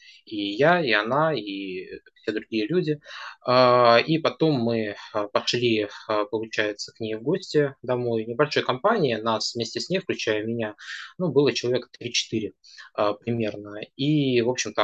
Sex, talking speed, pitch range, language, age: male, 140 wpm, 105-130 Hz, Russian, 20-39